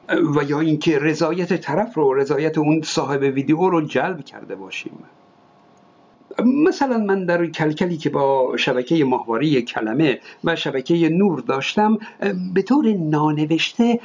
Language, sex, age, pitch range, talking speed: Persian, male, 50-69, 155-205 Hz, 130 wpm